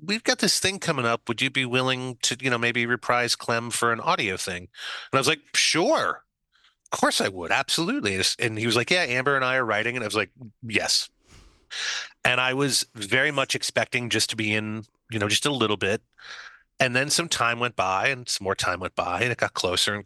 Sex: male